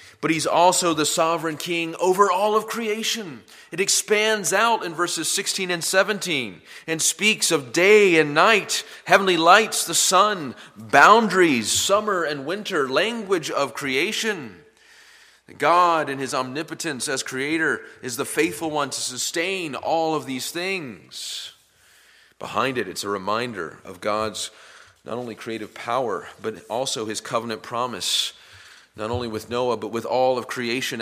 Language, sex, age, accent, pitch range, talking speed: English, male, 30-49, American, 120-180 Hz, 145 wpm